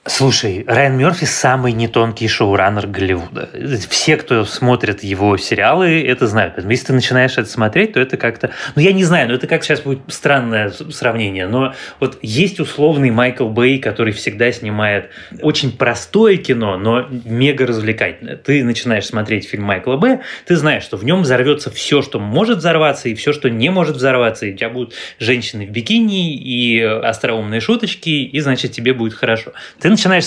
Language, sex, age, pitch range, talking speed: Russian, male, 20-39, 115-155 Hz, 175 wpm